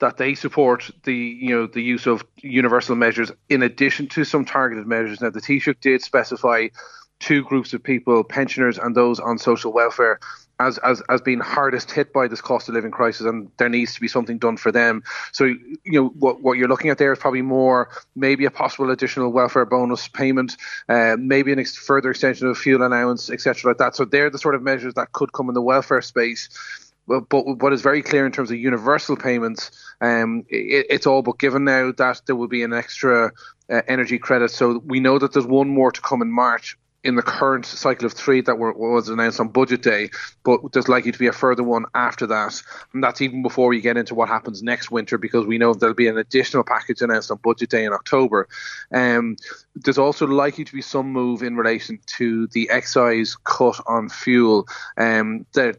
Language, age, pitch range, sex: English, 30-49, 120-135 Hz, male